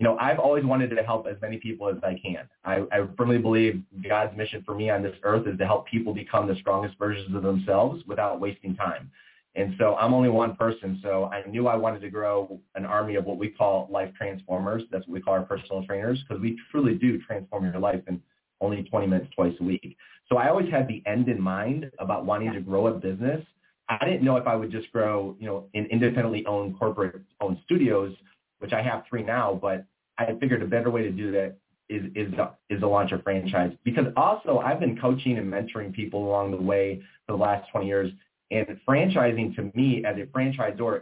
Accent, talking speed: American, 225 wpm